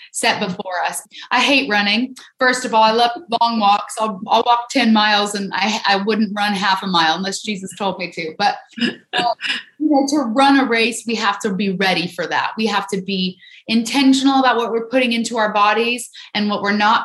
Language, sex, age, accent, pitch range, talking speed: English, female, 20-39, American, 205-240 Hz, 220 wpm